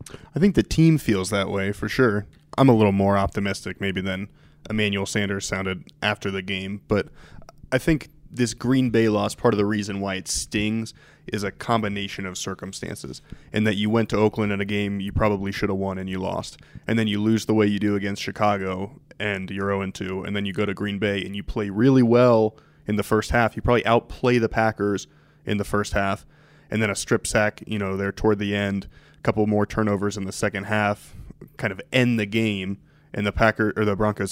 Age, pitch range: 20-39, 100-115 Hz